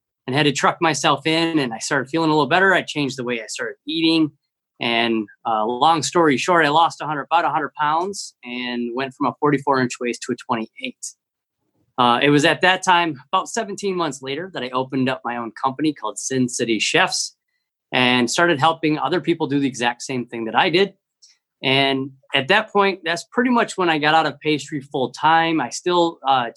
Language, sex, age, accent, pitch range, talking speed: English, male, 30-49, American, 125-165 Hz, 210 wpm